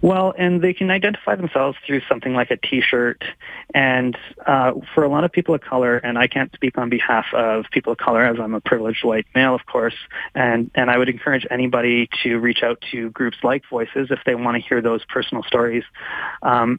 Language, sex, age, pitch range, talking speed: English, male, 30-49, 115-135 Hz, 215 wpm